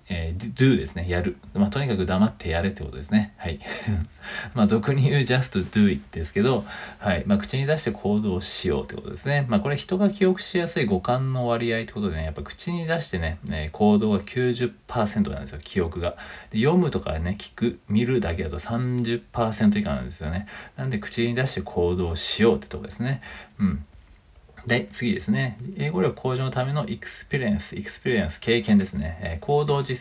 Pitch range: 90-125 Hz